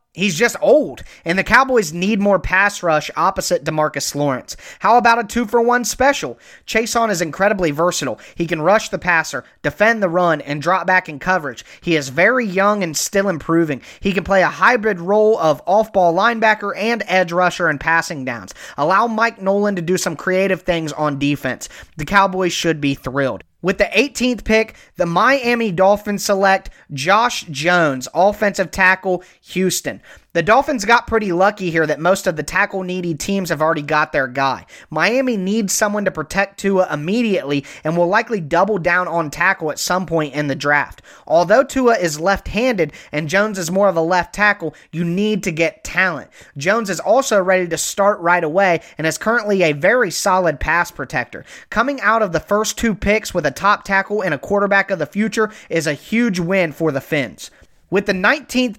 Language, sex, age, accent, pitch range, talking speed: English, male, 30-49, American, 165-210 Hz, 185 wpm